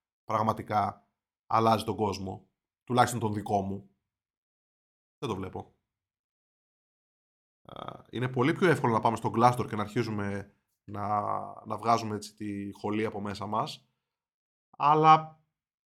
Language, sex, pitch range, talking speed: Greek, male, 105-135 Hz, 120 wpm